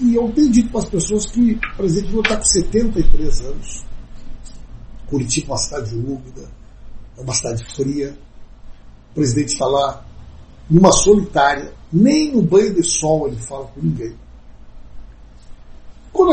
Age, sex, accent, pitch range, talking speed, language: 60-79, male, Brazilian, 110-165 Hz, 145 wpm, Portuguese